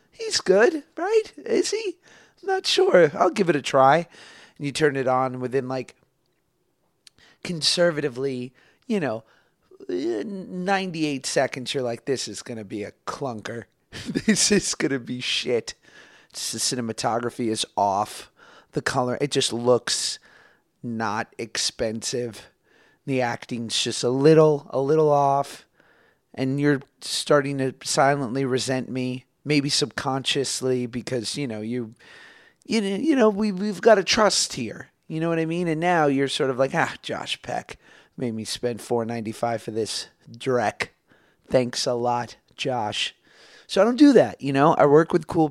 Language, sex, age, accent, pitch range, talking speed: English, male, 30-49, American, 125-180 Hz, 155 wpm